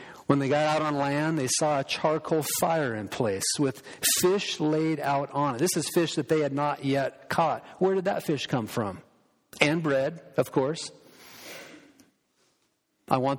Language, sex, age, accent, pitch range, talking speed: English, male, 50-69, American, 135-170 Hz, 180 wpm